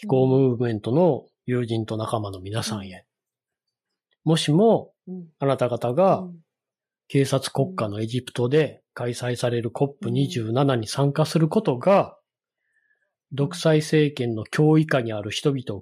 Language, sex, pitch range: Japanese, male, 130-165 Hz